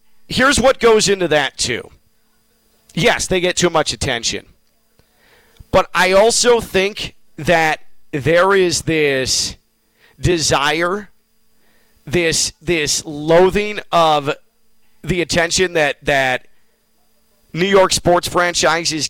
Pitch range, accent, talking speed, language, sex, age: 130-185 Hz, American, 105 wpm, English, male, 40-59